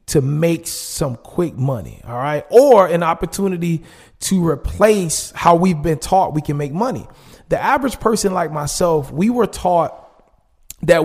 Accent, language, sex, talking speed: American, English, male, 155 wpm